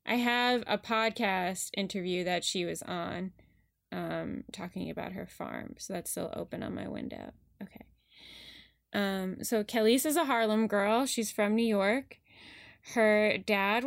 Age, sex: 10-29, female